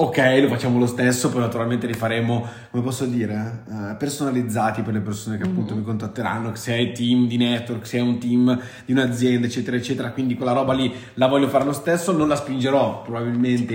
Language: Italian